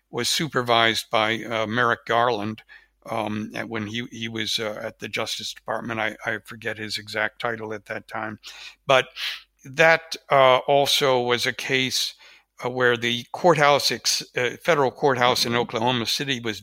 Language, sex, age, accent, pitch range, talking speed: English, male, 60-79, American, 115-130 Hz, 160 wpm